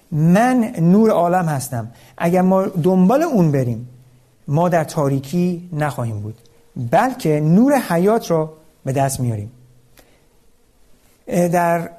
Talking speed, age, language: 110 wpm, 50-69, Persian